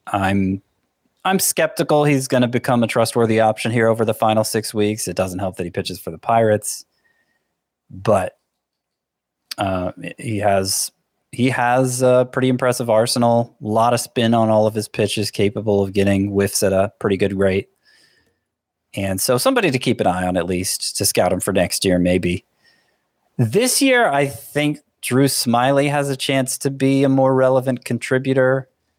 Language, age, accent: English, 30-49, American